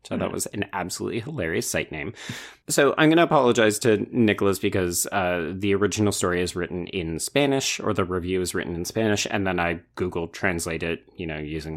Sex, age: male, 30-49